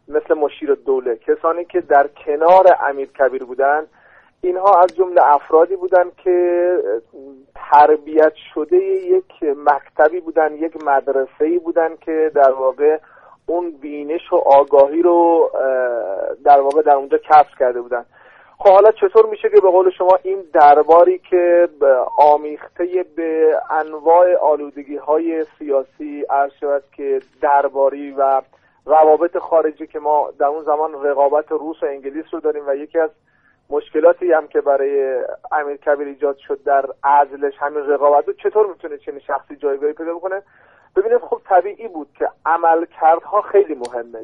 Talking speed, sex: 145 wpm, male